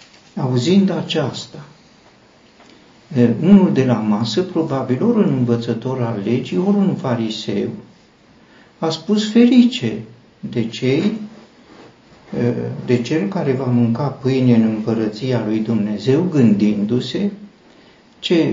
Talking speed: 105 wpm